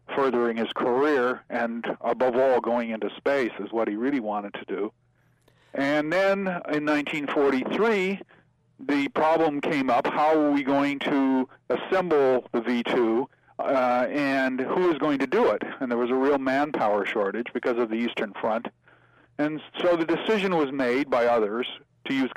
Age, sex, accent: 50-69, male, American